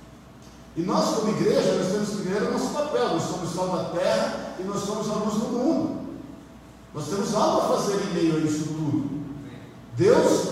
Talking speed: 185 wpm